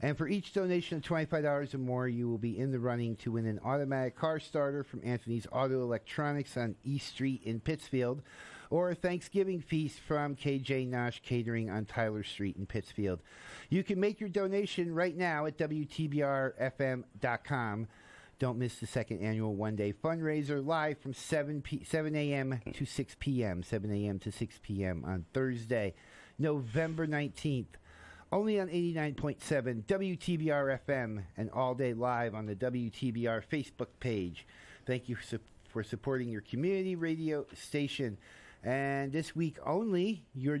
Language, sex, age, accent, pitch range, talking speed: English, male, 50-69, American, 120-150 Hz, 155 wpm